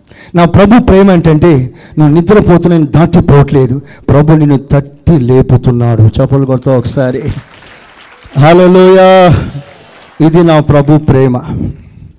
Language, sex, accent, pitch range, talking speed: Telugu, male, native, 135-180 Hz, 95 wpm